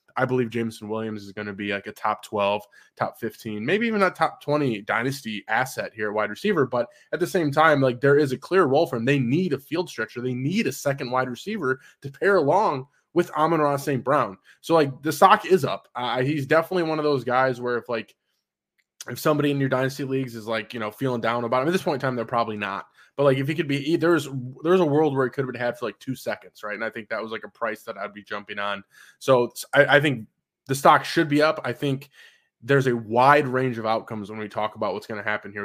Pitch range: 115-140 Hz